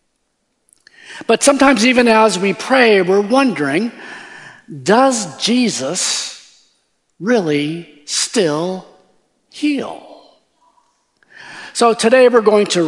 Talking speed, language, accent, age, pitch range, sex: 85 wpm, English, American, 50-69, 165-210 Hz, male